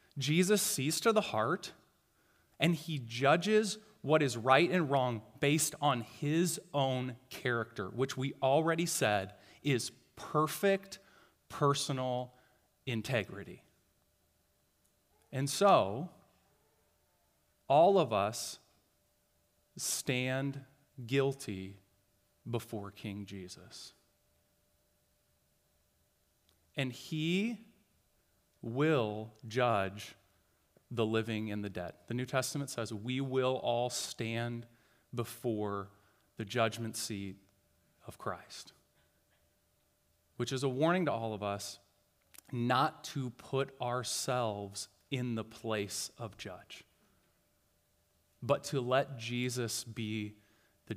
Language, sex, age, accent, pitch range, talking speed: English, male, 30-49, American, 100-135 Hz, 95 wpm